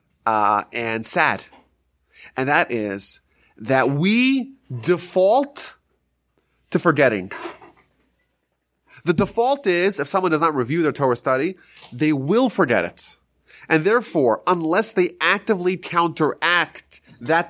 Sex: male